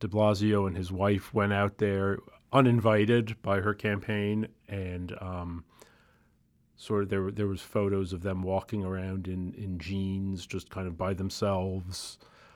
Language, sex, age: English, male, 40-59